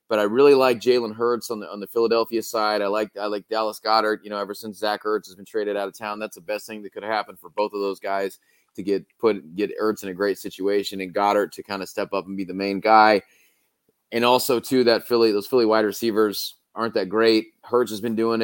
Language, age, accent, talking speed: English, 20-39, American, 255 wpm